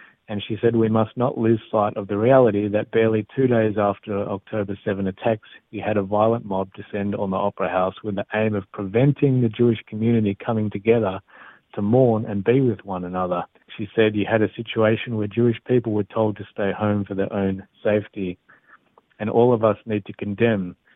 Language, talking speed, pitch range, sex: Hebrew, 205 wpm, 105-125 Hz, male